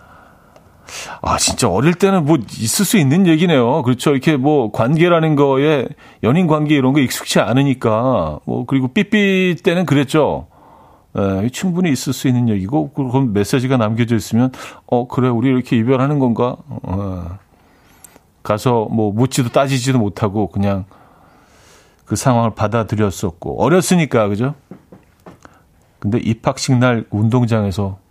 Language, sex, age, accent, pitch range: Korean, male, 40-59, native, 110-150 Hz